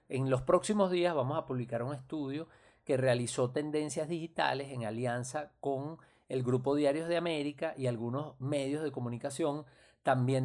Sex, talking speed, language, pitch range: male, 155 wpm, Spanish, 125-165 Hz